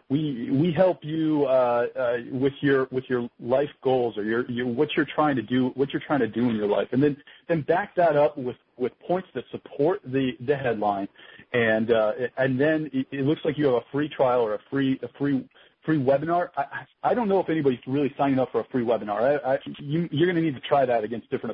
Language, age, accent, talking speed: English, 40-59, American, 240 wpm